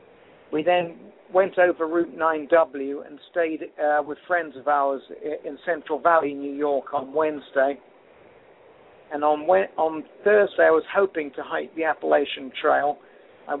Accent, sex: British, male